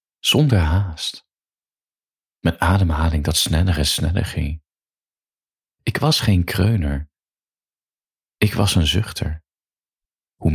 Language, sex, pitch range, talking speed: Dutch, male, 80-95 Hz, 100 wpm